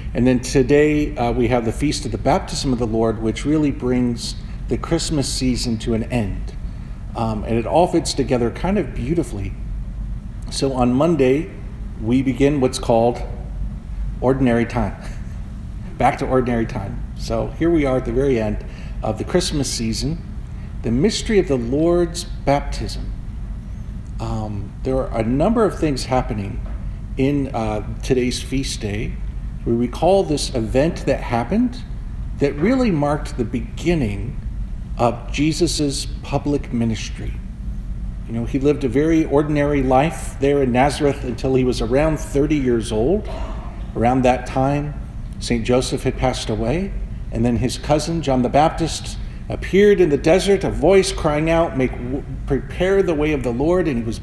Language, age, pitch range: English, 50-69, 115-150 Hz